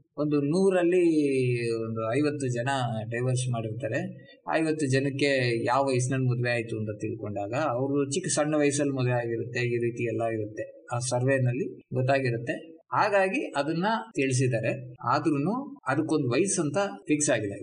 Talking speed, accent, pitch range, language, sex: 125 wpm, native, 115-155 Hz, Kannada, male